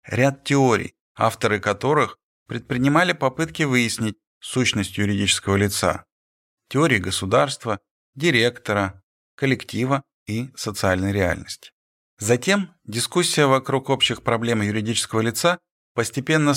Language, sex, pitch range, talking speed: Russian, male, 95-135 Hz, 90 wpm